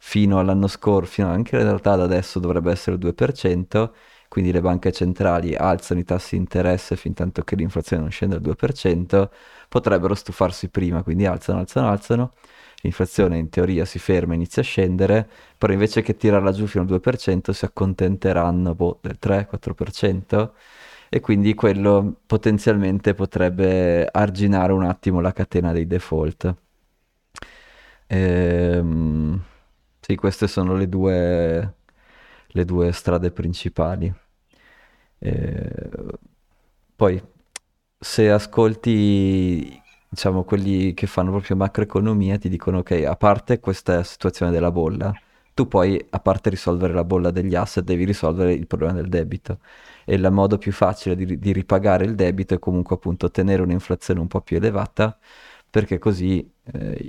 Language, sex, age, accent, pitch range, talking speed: Italian, male, 20-39, native, 90-100 Hz, 145 wpm